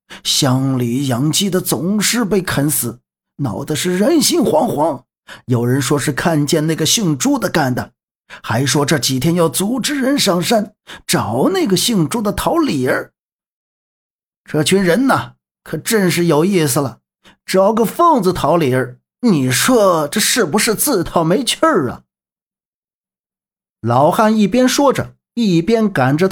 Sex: male